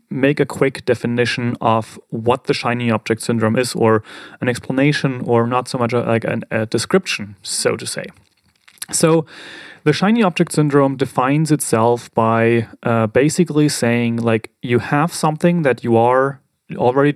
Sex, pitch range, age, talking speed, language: male, 115-145 Hz, 30-49, 155 wpm, English